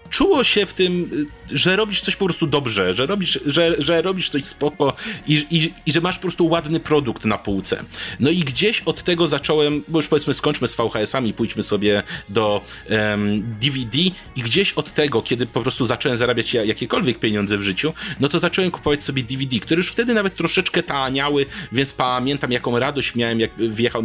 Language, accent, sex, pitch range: Polish, native, male, 120-160 Hz